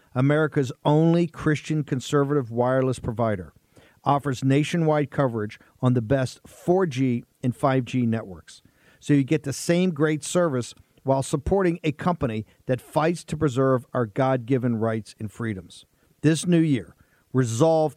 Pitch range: 125-155 Hz